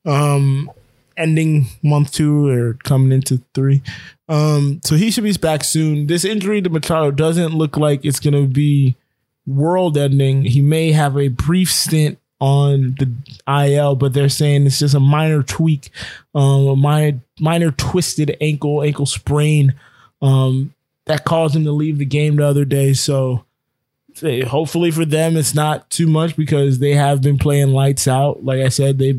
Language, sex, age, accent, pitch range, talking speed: English, male, 20-39, American, 130-150 Hz, 170 wpm